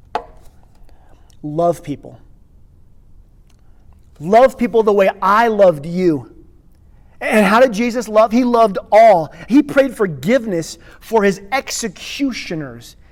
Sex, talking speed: male, 105 wpm